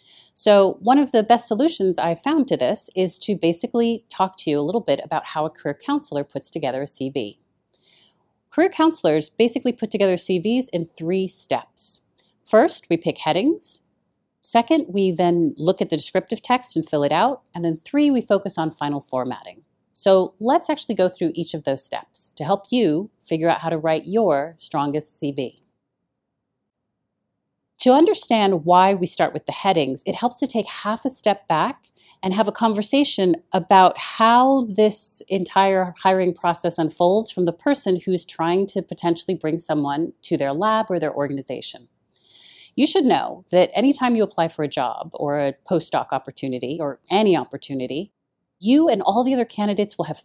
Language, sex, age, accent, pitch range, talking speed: English, female, 30-49, American, 160-230 Hz, 175 wpm